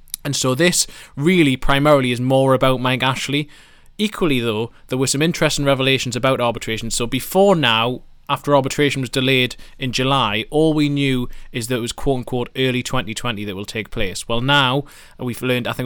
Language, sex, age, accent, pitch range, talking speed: English, male, 20-39, British, 115-135 Hz, 180 wpm